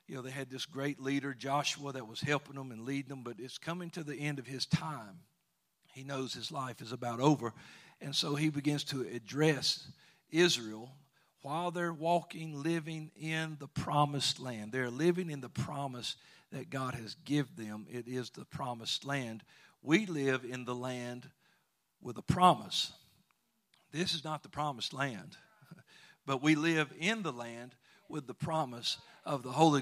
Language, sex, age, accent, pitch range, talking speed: English, male, 50-69, American, 130-160 Hz, 170 wpm